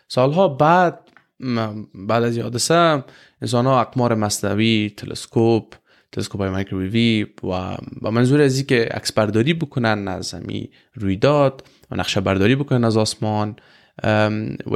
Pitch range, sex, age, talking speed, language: 105-135 Hz, male, 20-39, 125 wpm, Persian